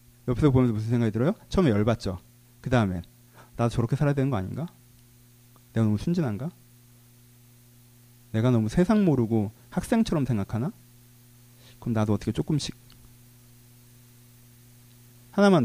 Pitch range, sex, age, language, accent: 120-150 Hz, male, 30-49, Korean, native